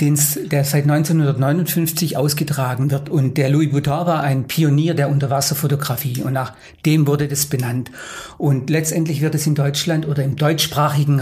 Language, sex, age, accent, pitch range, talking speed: German, male, 50-69, German, 140-160 Hz, 155 wpm